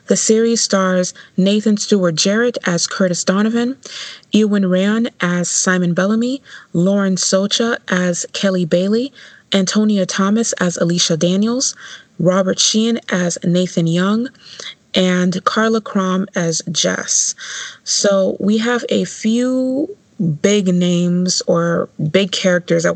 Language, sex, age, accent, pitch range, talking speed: English, female, 20-39, American, 175-220 Hz, 120 wpm